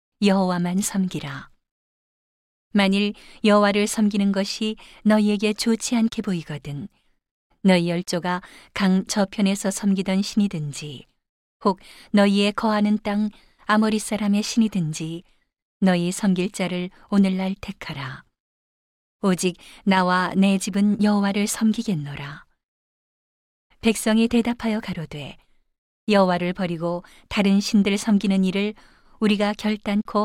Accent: native